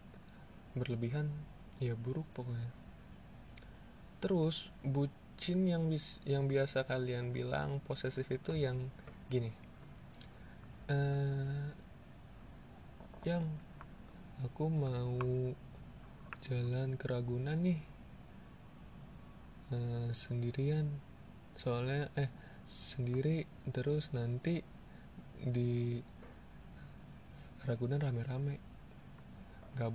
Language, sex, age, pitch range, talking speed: Indonesian, male, 20-39, 125-155 Hz, 70 wpm